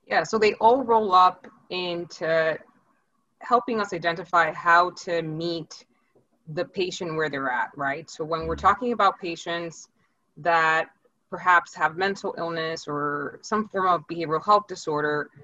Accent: American